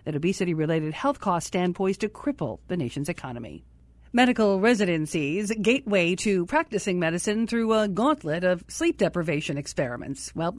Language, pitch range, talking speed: English, 170-215 Hz, 140 wpm